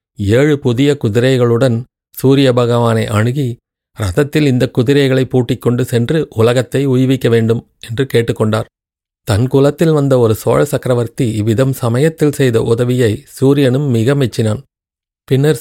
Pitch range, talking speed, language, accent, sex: 115-135 Hz, 110 wpm, Tamil, native, male